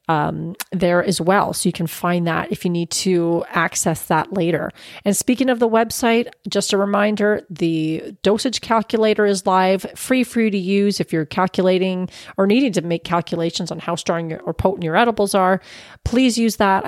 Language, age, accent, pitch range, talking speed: English, 30-49, American, 175-220 Hz, 190 wpm